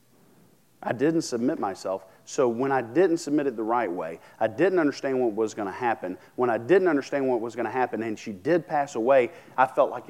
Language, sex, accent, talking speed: English, male, American, 225 wpm